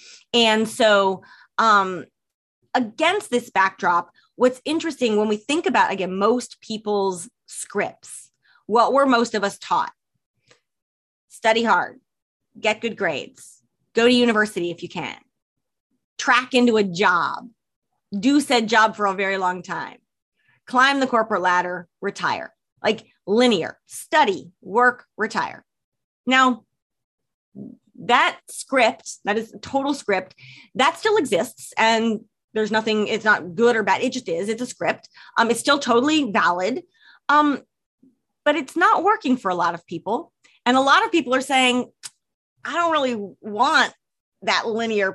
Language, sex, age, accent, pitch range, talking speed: English, female, 30-49, American, 205-265 Hz, 145 wpm